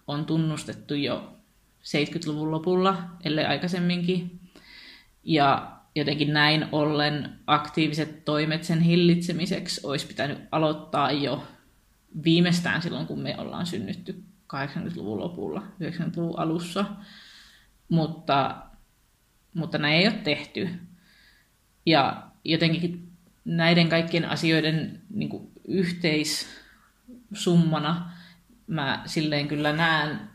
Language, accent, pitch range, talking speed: Finnish, native, 150-180 Hz, 90 wpm